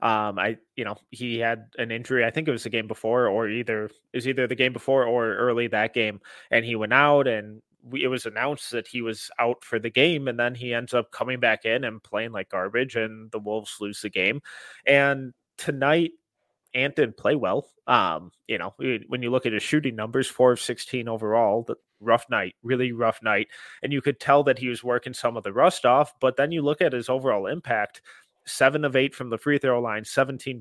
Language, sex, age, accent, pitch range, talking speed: English, male, 20-39, American, 115-140 Hz, 225 wpm